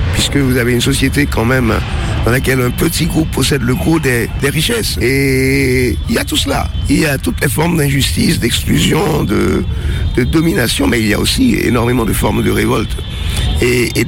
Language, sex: French, male